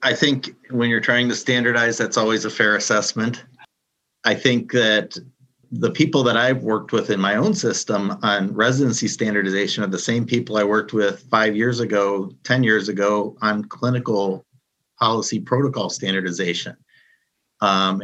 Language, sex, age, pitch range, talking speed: English, male, 40-59, 100-125 Hz, 155 wpm